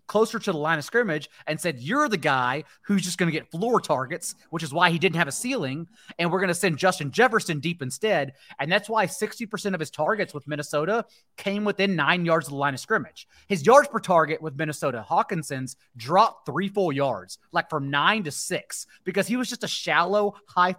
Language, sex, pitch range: English, male, 155-210 Hz